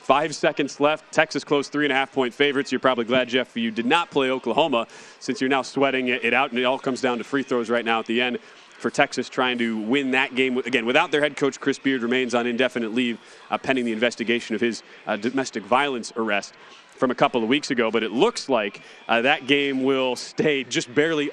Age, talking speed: 30-49, 240 wpm